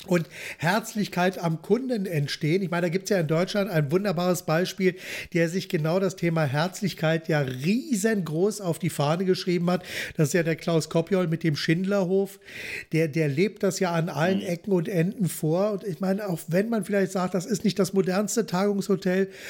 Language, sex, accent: German, male, German